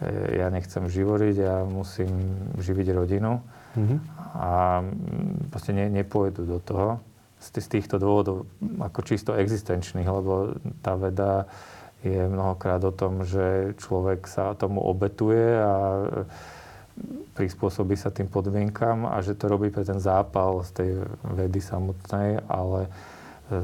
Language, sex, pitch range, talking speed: Slovak, male, 95-100 Hz, 125 wpm